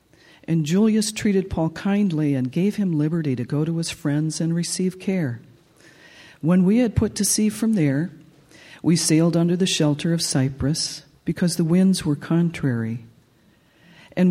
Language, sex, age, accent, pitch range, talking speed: English, female, 50-69, American, 135-165 Hz, 160 wpm